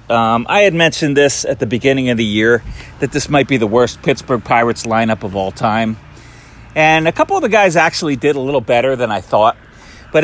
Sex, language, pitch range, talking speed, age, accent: male, English, 110-150 Hz, 225 wpm, 40-59, American